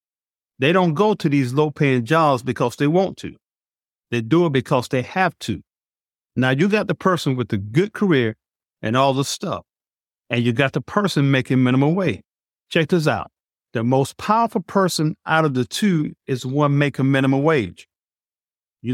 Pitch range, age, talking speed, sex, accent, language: 120-175 Hz, 50-69, 175 wpm, male, American, English